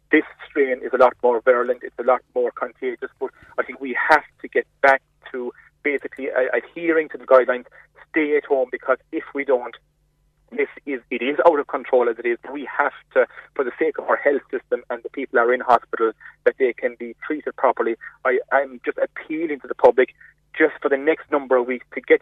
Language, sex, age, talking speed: English, male, 30-49, 225 wpm